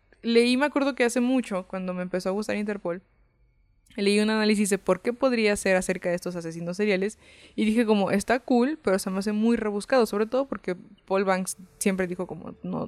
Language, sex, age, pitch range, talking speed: Spanish, female, 20-39, 180-220 Hz, 215 wpm